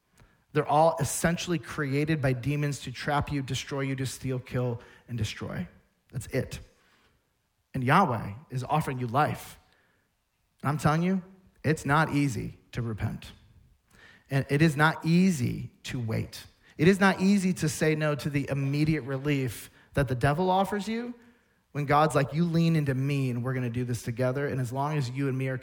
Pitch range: 125-165 Hz